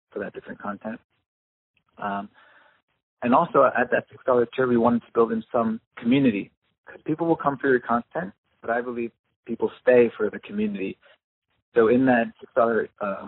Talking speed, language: 185 wpm, English